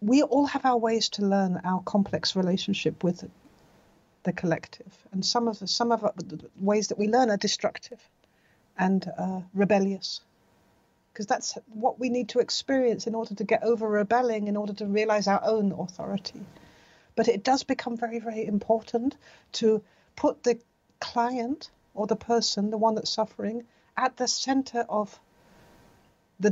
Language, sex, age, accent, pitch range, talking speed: English, female, 50-69, British, 200-240 Hz, 165 wpm